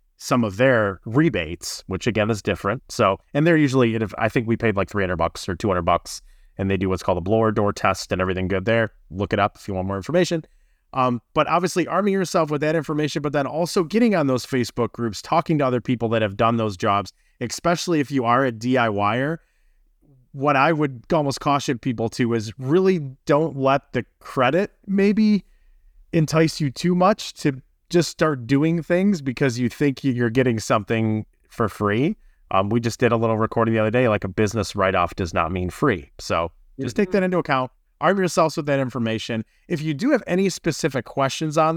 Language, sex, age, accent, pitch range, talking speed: English, male, 30-49, American, 110-160 Hz, 205 wpm